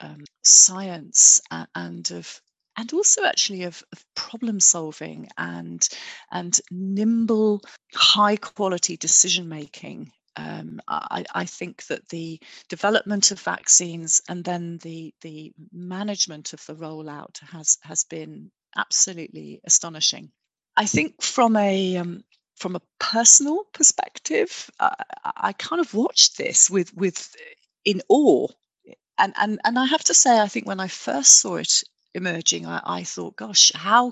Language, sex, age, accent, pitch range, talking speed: English, female, 40-59, British, 155-220 Hz, 140 wpm